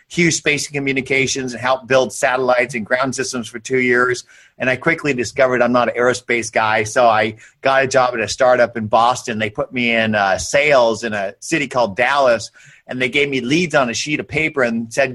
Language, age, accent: English, 50-69, American